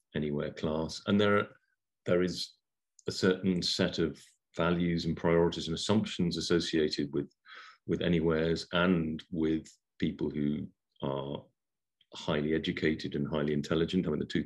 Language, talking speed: English, 140 wpm